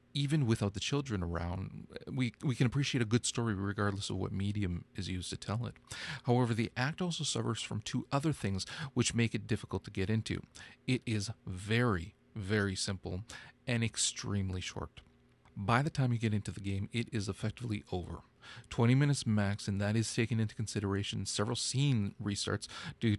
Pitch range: 100-125 Hz